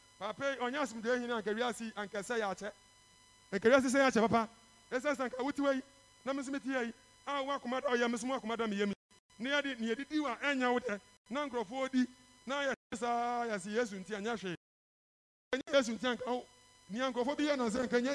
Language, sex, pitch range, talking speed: English, male, 190-265 Hz, 150 wpm